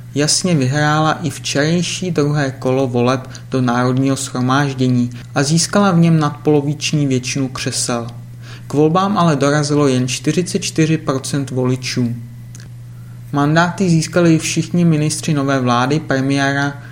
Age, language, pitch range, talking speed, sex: 30-49, Czech, 125-150 Hz, 115 wpm, male